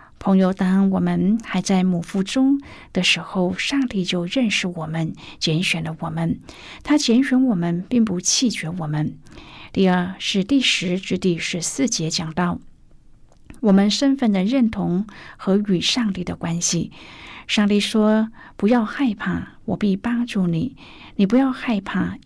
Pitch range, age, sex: 175-235 Hz, 50-69, female